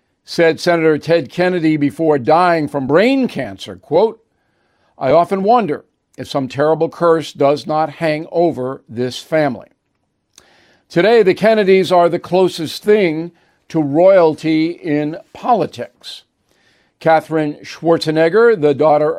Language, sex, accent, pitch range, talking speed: English, male, American, 150-180 Hz, 120 wpm